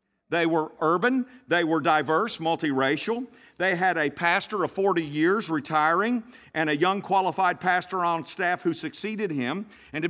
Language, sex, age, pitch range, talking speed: English, male, 50-69, 125-195 Hz, 160 wpm